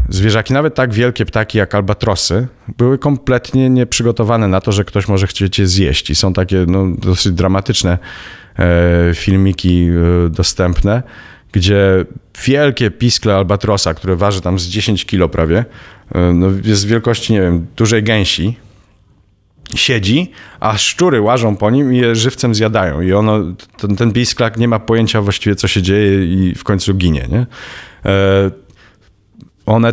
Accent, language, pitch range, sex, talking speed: native, Polish, 90-110 Hz, male, 145 wpm